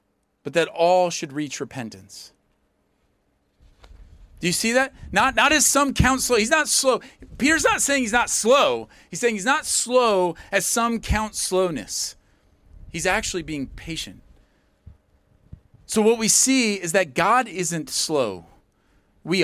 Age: 40-59